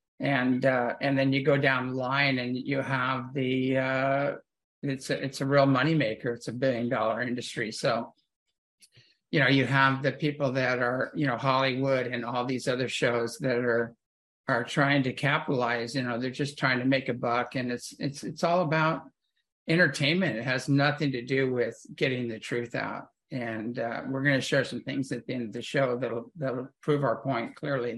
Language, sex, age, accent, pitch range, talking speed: English, male, 50-69, American, 125-145 Hz, 200 wpm